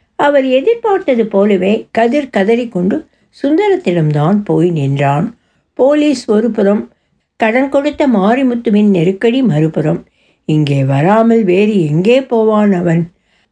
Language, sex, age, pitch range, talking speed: Tamil, female, 60-79, 165-210 Hz, 100 wpm